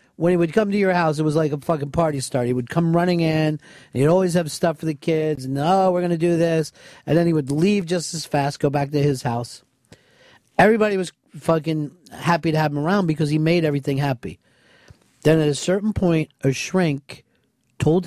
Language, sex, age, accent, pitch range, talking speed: English, male, 50-69, American, 135-170 Hz, 225 wpm